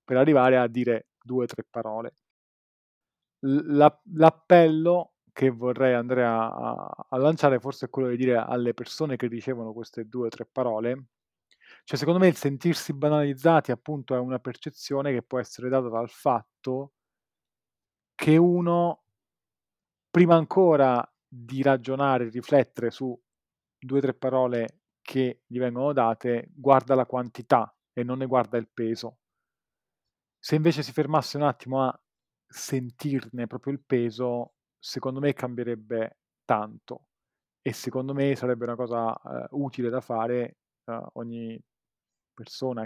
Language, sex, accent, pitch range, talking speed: Italian, male, native, 115-135 Hz, 140 wpm